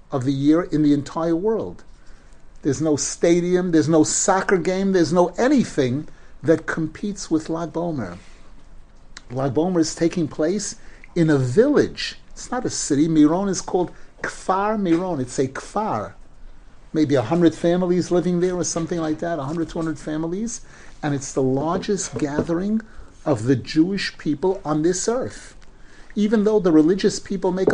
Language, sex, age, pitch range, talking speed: English, male, 50-69, 140-180 Hz, 160 wpm